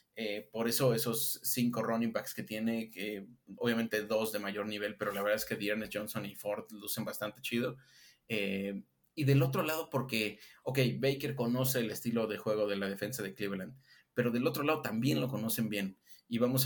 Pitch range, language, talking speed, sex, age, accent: 105-120 Hz, Spanish, 200 wpm, male, 30-49, Mexican